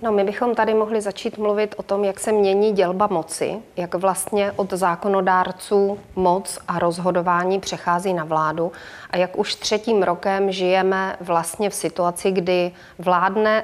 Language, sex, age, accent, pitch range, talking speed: Czech, female, 30-49, native, 185-220 Hz, 155 wpm